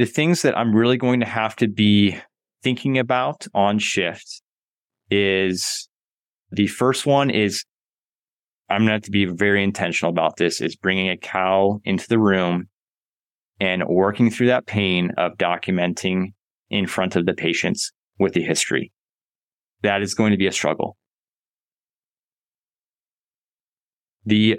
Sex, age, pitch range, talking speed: male, 30-49, 95-110 Hz, 145 wpm